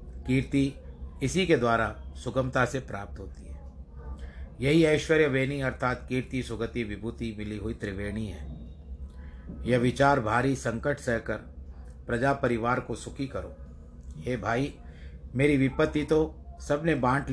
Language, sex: Hindi, male